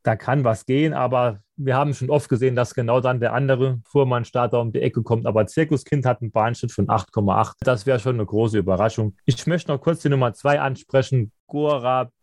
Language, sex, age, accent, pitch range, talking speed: German, male, 30-49, German, 120-155 Hz, 210 wpm